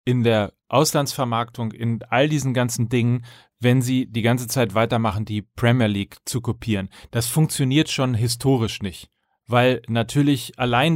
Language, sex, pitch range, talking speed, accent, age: German, male, 120-150 Hz, 150 wpm, German, 30-49